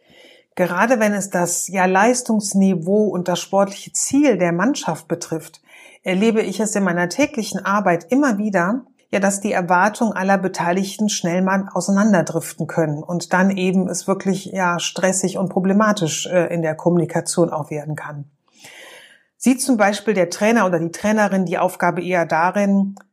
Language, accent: German, German